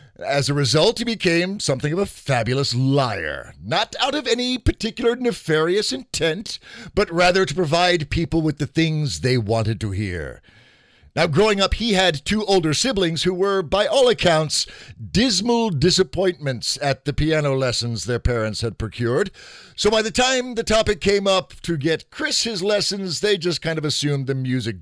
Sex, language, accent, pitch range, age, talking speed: male, English, American, 125-185 Hz, 50-69, 175 wpm